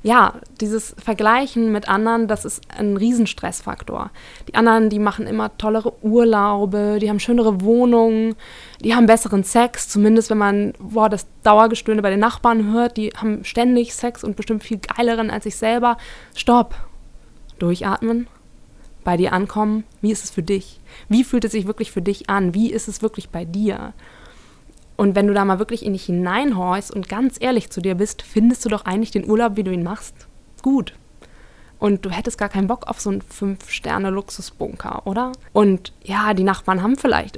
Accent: German